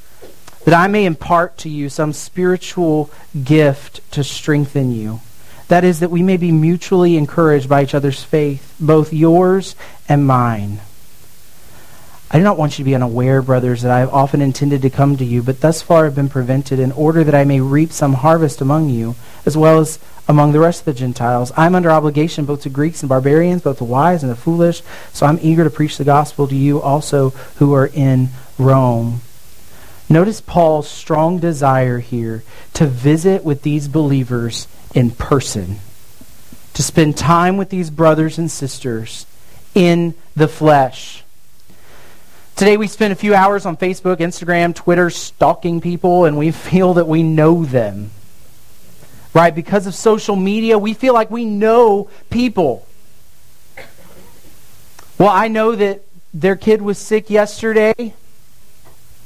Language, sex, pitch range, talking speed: English, male, 130-175 Hz, 165 wpm